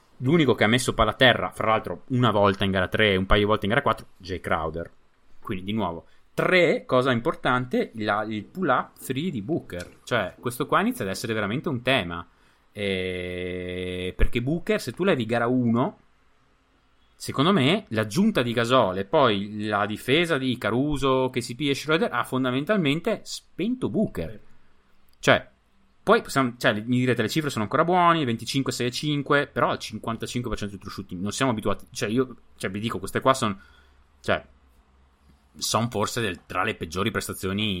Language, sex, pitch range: Italian, male, 95-125 Hz